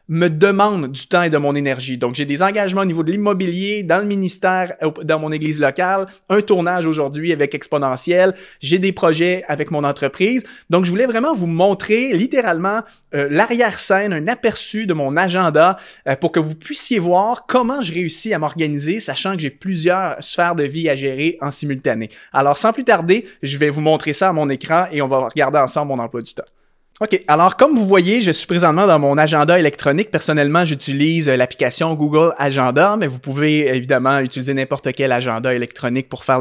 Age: 30-49